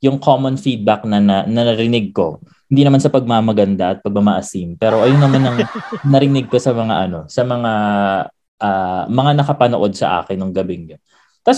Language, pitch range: Filipino, 105-160 Hz